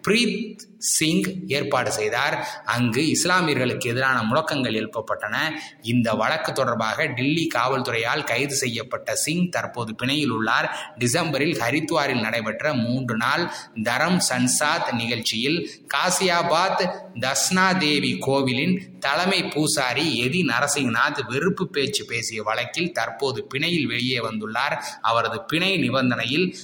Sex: male